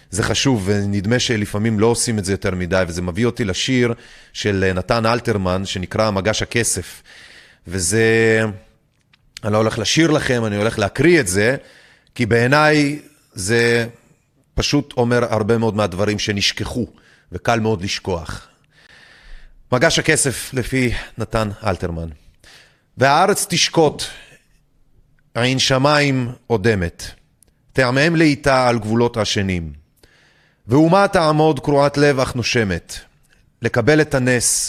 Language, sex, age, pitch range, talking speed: Hebrew, male, 30-49, 105-140 Hz, 115 wpm